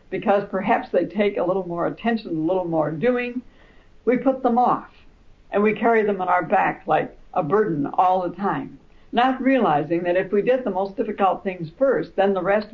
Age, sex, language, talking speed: 60-79, female, English, 205 wpm